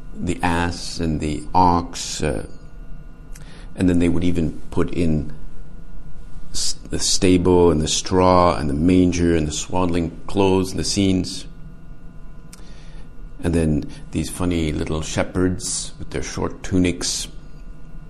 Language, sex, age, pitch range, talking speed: English, male, 50-69, 80-90 Hz, 125 wpm